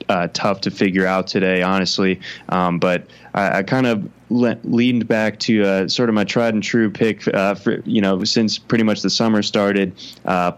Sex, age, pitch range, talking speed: male, 20-39, 95-110 Hz, 205 wpm